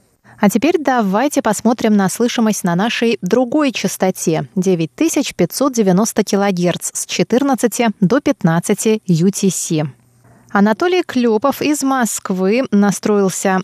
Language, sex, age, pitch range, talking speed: Russian, female, 20-39, 180-235 Hz, 95 wpm